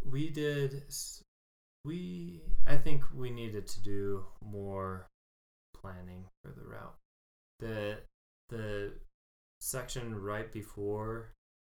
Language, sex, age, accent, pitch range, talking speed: English, male, 20-39, American, 85-100 Hz, 100 wpm